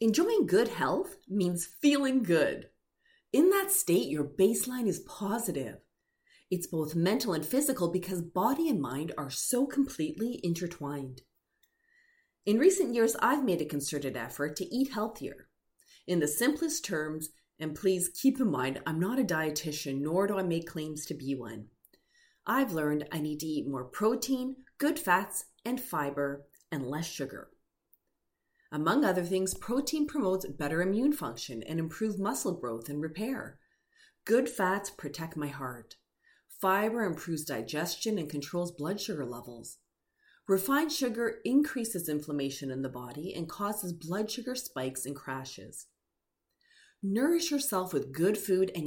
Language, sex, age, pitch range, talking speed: English, female, 30-49, 150-245 Hz, 145 wpm